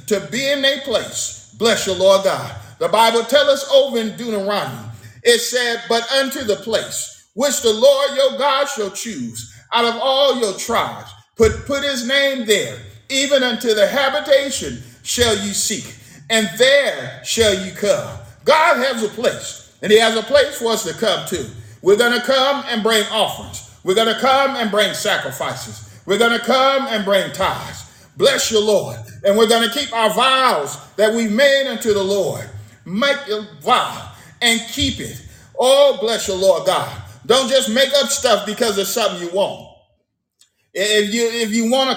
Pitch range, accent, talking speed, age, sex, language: 200-270 Hz, American, 180 wpm, 50-69, male, English